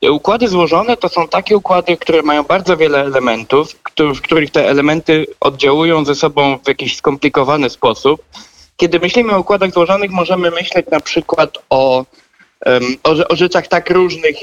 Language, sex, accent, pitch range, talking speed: Polish, male, native, 145-190 Hz, 150 wpm